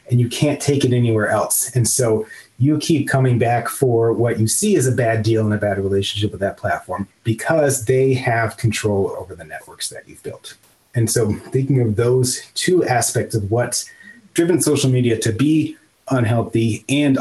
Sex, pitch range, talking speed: male, 110-130 Hz, 190 wpm